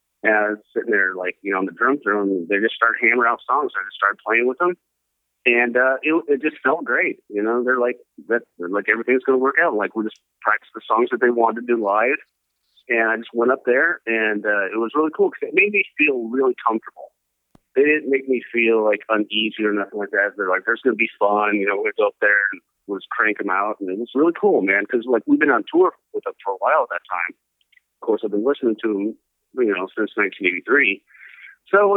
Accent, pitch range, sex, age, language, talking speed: American, 110-170 Hz, male, 40-59, English, 255 wpm